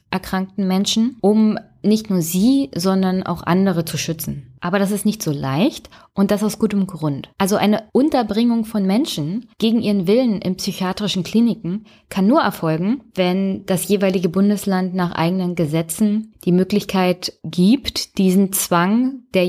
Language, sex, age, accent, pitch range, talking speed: German, female, 20-39, German, 175-210 Hz, 150 wpm